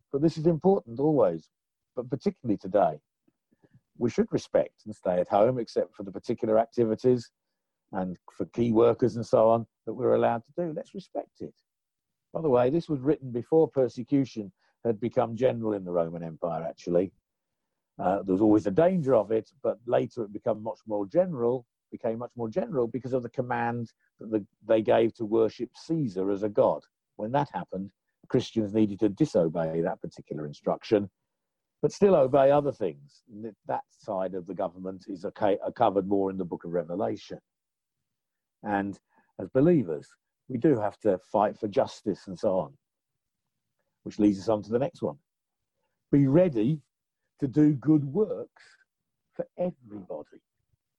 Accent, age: British, 50-69